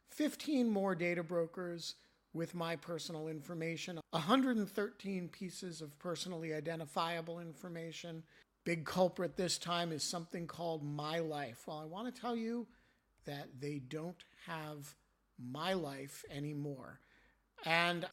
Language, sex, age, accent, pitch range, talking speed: English, male, 50-69, American, 155-195 Hz, 120 wpm